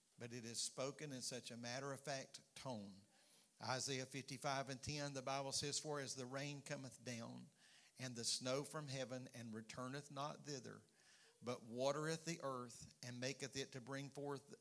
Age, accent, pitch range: 50-69, American, 125-140 Hz